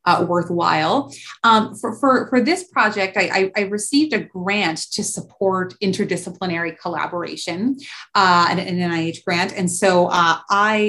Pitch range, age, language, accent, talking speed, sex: 175-205 Hz, 30-49, English, American, 150 wpm, female